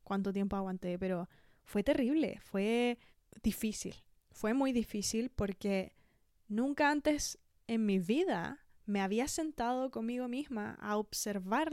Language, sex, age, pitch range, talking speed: Spanish, female, 20-39, 200-245 Hz, 125 wpm